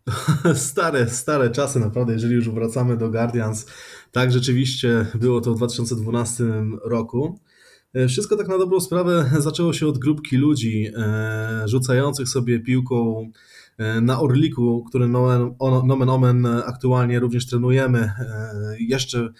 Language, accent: Polish, native